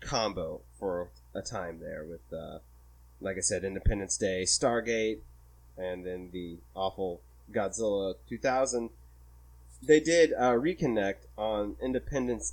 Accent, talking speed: American, 120 wpm